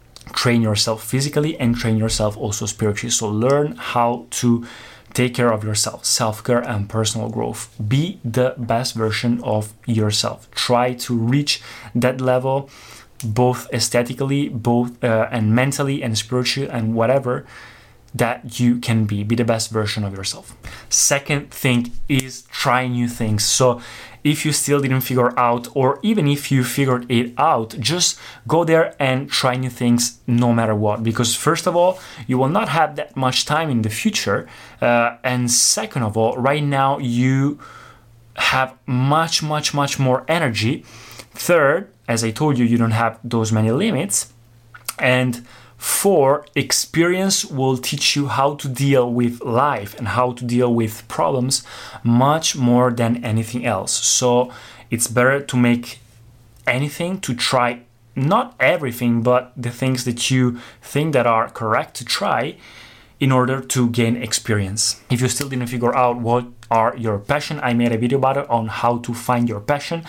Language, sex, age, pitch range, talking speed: Italian, male, 20-39, 115-135 Hz, 165 wpm